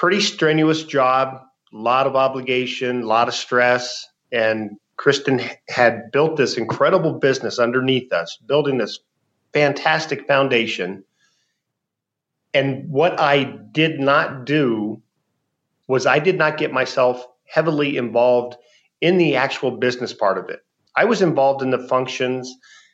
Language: English